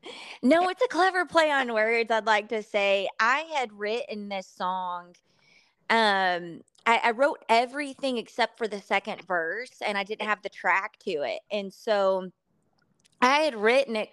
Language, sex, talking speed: English, female, 170 wpm